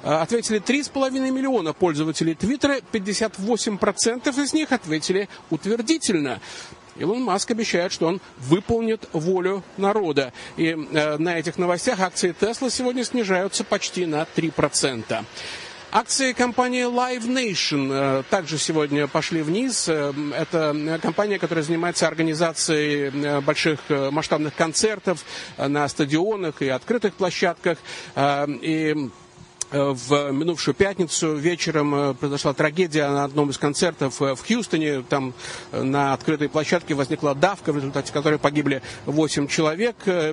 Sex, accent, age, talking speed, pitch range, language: male, native, 50-69, 110 wpm, 145-195 Hz, Russian